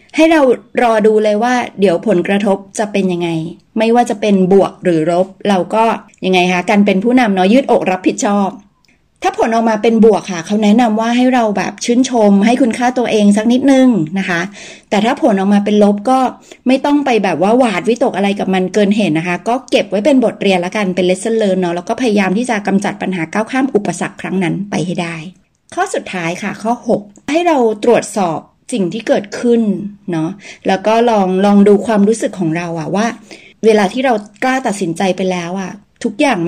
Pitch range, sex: 185-235 Hz, female